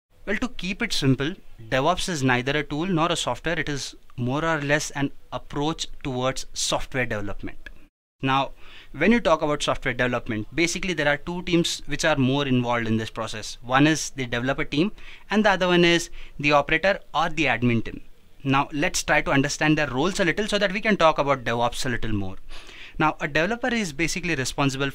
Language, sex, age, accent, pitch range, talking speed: English, male, 20-39, Indian, 125-165 Hz, 200 wpm